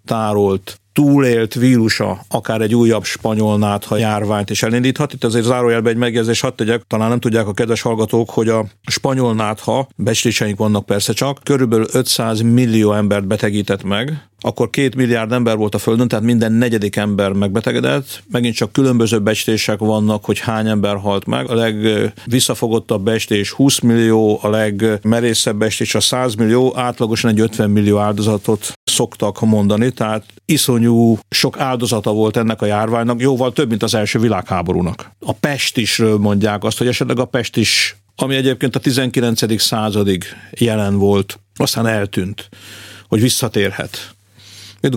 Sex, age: male, 50-69